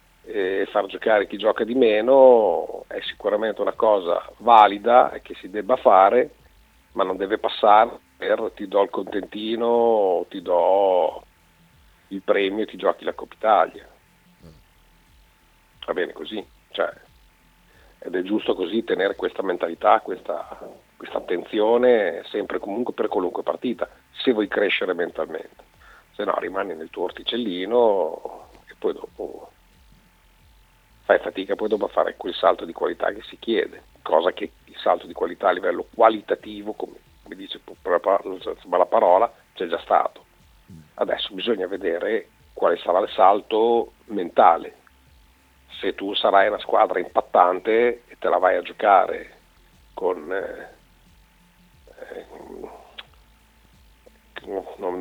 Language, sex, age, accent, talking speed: Italian, male, 50-69, native, 130 wpm